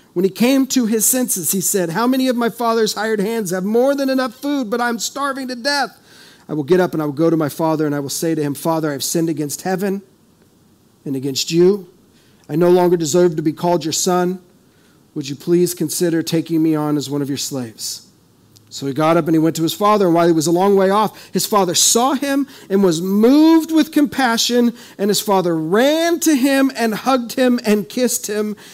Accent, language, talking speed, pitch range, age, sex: American, English, 230 wpm, 155-230 Hz, 40-59, male